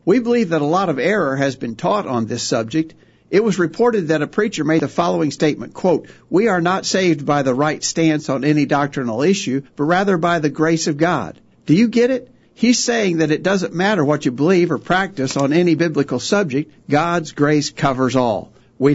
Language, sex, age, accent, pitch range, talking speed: English, male, 60-79, American, 140-185 Hz, 210 wpm